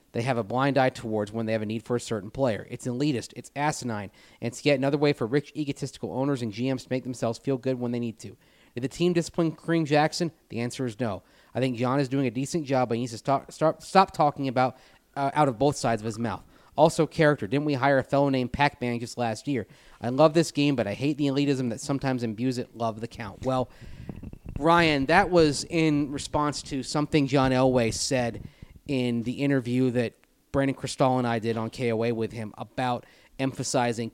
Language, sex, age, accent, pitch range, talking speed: English, male, 30-49, American, 115-140 Hz, 225 wpm